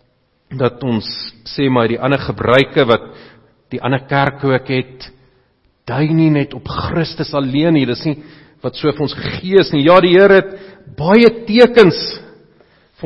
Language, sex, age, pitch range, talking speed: English, male, 50-69, 125-160 Hz, 165 wpm